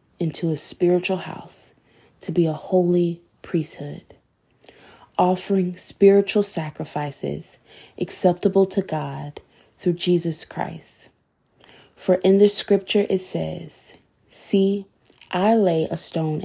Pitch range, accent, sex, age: 165-195 Hz, American, female, 20-39